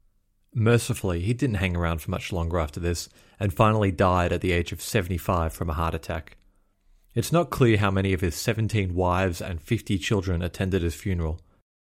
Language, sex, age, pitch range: English, male, 30-49, 90-110 Hz